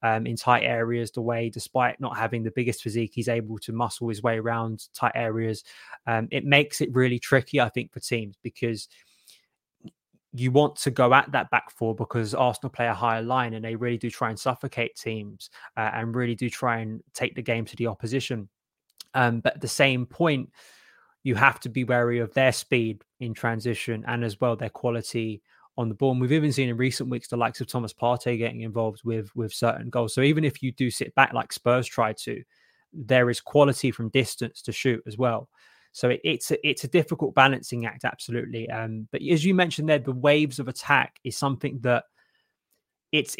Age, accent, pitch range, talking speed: 20-39, British, 115-130 Hz, 210 wpm